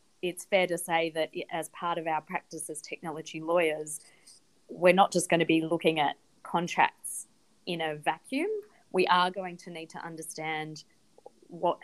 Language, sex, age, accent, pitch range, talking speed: English, female, 20-39, Australian, 155-175 Hz, 165 wpm